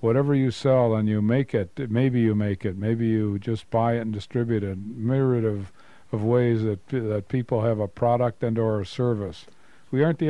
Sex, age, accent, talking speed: male, 50-69, American, 215 wpm